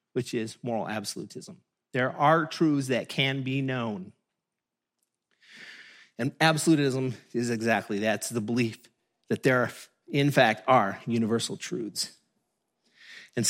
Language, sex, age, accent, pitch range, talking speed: English, male, 30-49, American, 130-175 Hz, 120 wpm